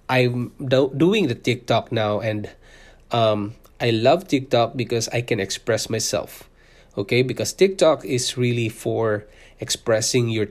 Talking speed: 135 wpm